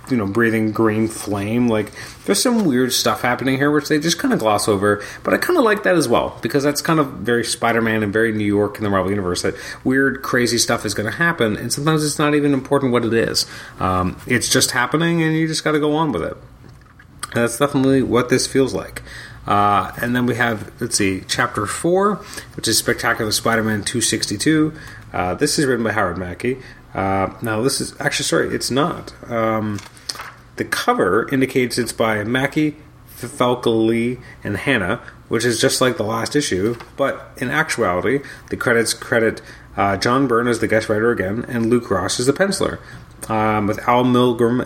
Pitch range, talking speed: 105-135 Hz, 200 wpm